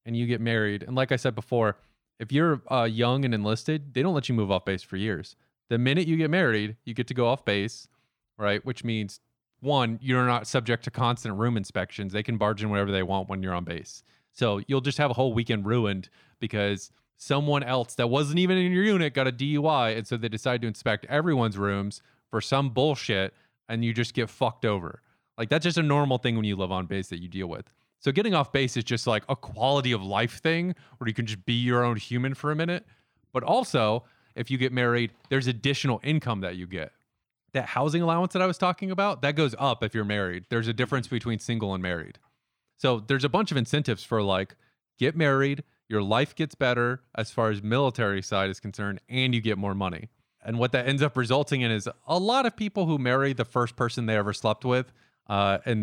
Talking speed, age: 230 wpm, 30-49